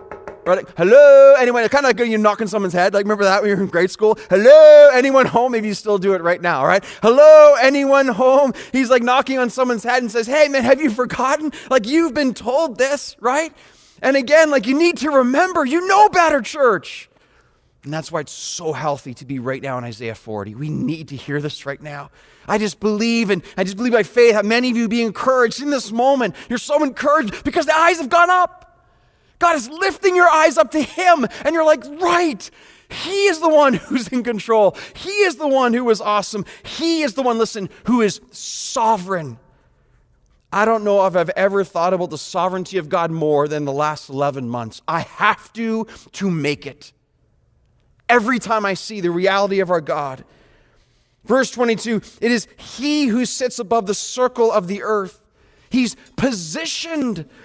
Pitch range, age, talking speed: 190-280 Hz, 30-49, 205 wpm